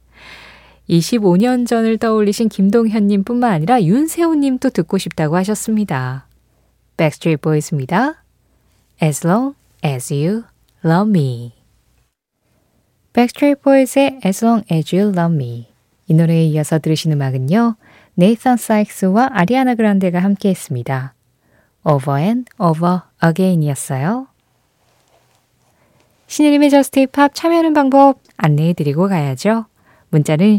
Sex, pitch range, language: female, 155-230 Hz, Korean